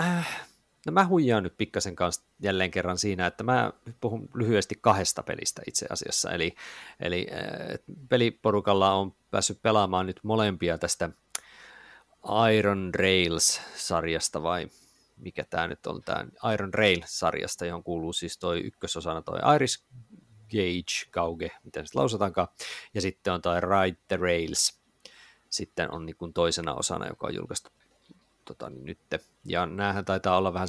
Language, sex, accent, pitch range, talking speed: Finnish, male, native, 85-105 Hz, 135 wpm